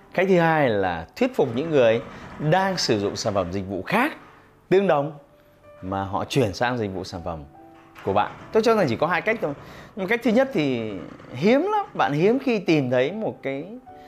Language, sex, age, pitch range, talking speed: Vietnamese, male, 20-39, 100-150 Hz, 215 wpm